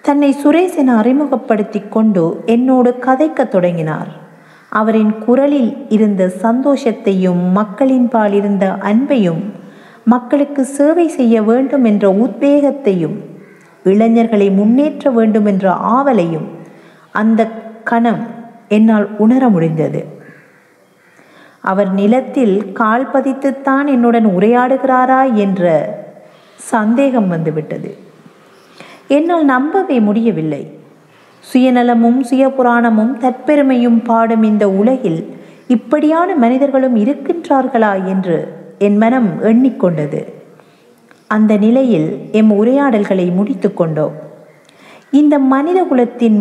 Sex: female